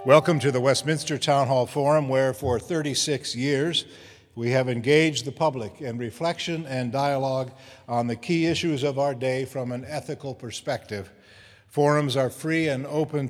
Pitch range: 120-150 Hz